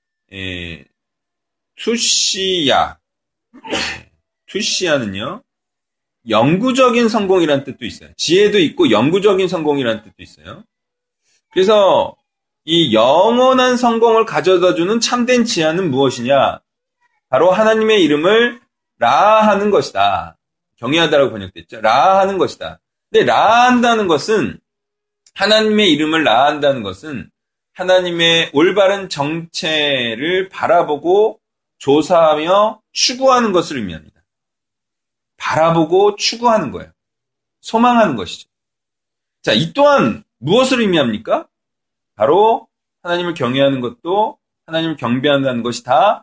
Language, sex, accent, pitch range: Korean, male, native, 155-235 Hz